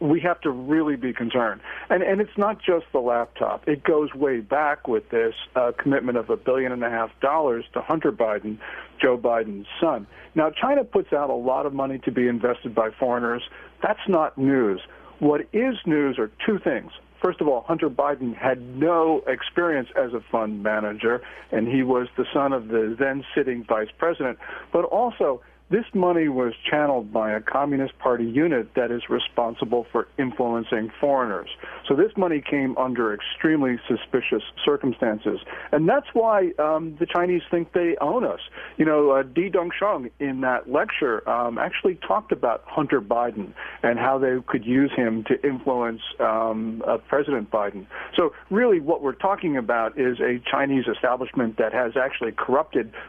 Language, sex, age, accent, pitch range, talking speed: English, male, 50-69, American, 120-160 Hz, 175 wpm